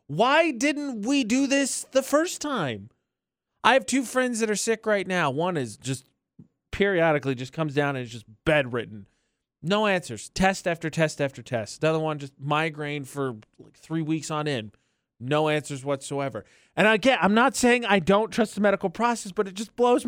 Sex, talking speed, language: male, 190 wpm, English